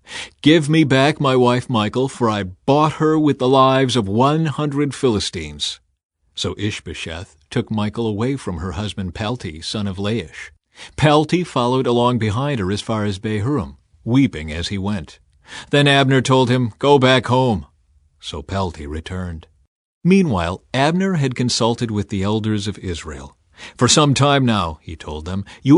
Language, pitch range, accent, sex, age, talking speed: English, 95-140 Hz, American, male, 40-59, 160 wpm